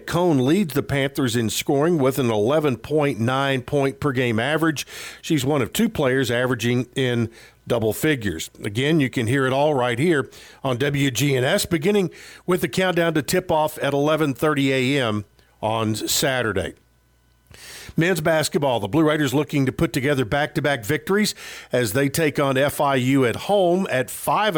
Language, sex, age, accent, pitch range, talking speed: English, male, 50-69, American, 125-160 Hz, 155 wpm